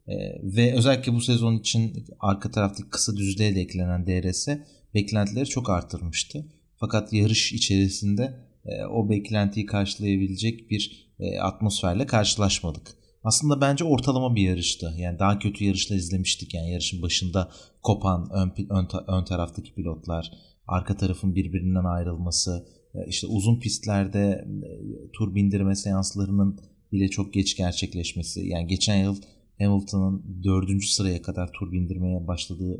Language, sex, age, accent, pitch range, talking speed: Turkish, male, 30-49, native, 90-110 Hz, 120 wpm